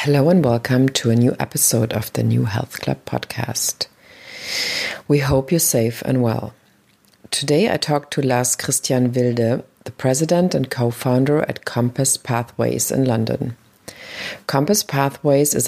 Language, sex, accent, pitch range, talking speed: English, female, German, 115-140 Hz, 140 wpm